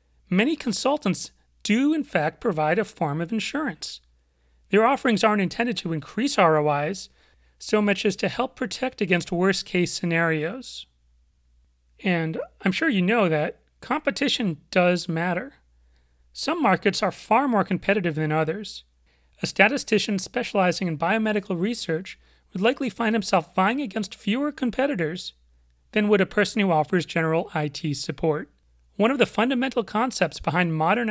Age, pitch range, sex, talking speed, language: 40-59, 160-220 Hz, male, 140 wpm, English